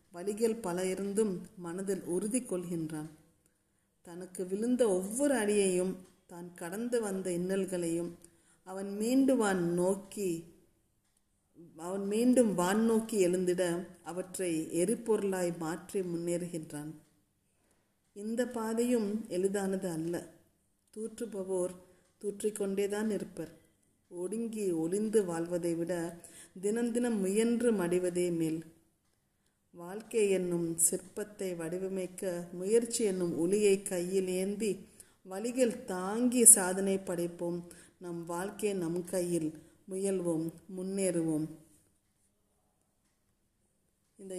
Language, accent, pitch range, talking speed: Tamil, native, 170-200 Hz, 80 wpm